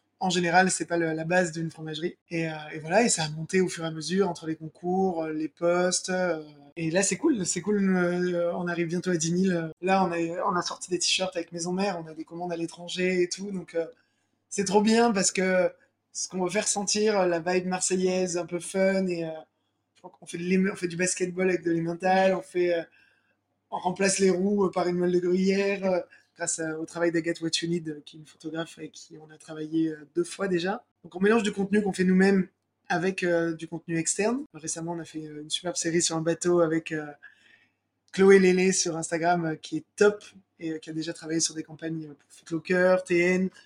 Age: 20-39